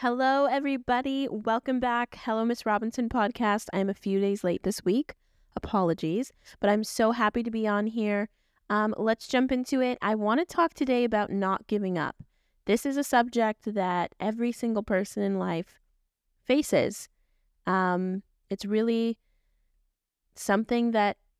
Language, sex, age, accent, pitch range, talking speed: English, female, 10-29, American, 190-230 Hz, 150 wpm